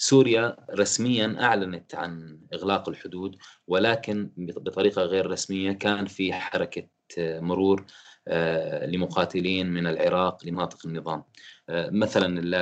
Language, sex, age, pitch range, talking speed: Arabic, male, 20-39, 85-100 Hz, 95 wpm